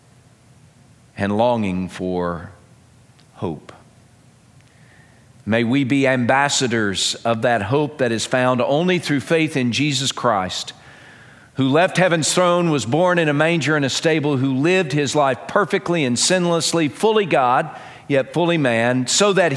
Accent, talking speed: American, 140 wpm